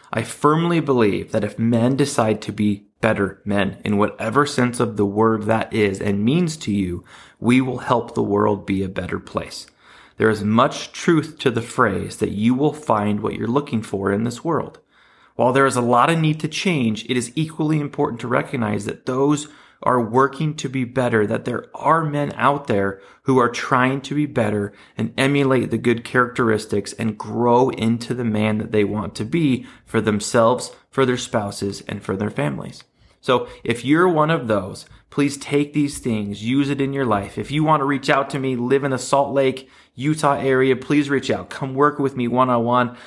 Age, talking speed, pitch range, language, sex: 30-49, 205 wpm, 110-140 Hz, English, male